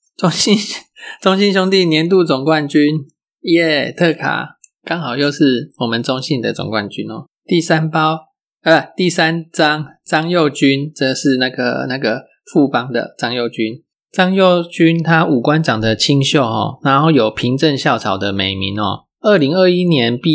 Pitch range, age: 120-165 Hz, 20-39